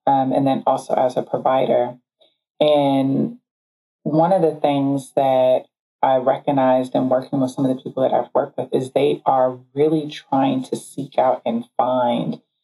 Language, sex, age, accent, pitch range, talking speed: English, female, 20-39, American, 130-165 Hz, 170 wpm